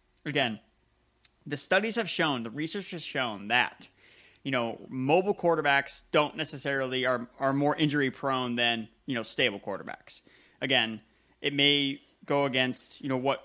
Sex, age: male, 20-39